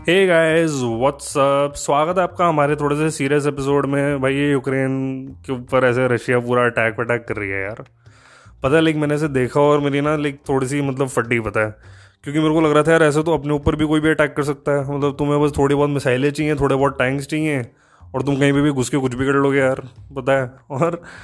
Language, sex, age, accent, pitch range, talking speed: Hindi, male, 20-39, native, 120-145 Hz, 245 wpm